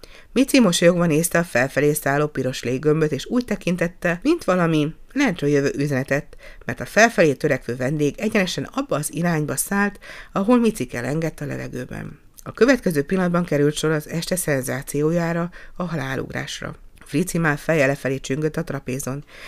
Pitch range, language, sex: 140-180 Hz, Hungarian, female